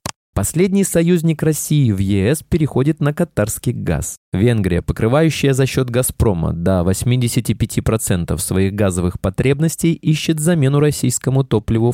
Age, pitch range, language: 20-39, 100-150 Hz, Russian